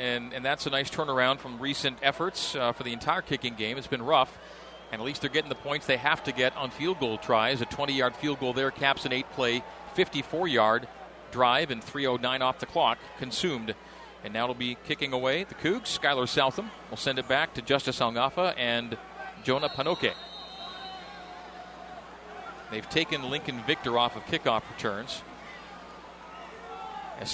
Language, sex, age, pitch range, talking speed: English, male, 40-59, 125-145 Hz, 180 wpm